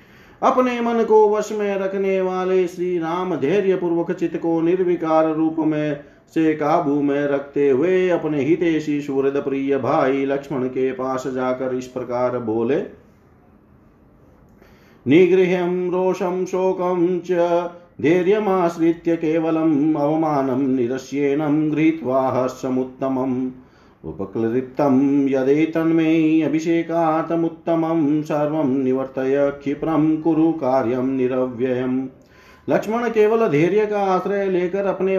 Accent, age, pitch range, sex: native, 40-59, 135-175 Hz, male